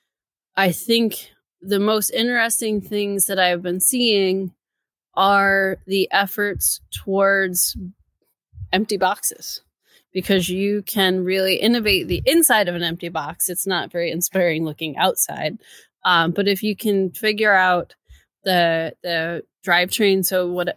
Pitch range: 180-210 Hz